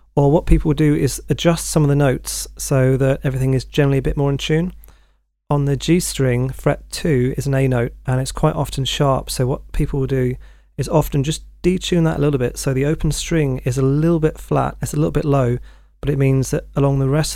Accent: British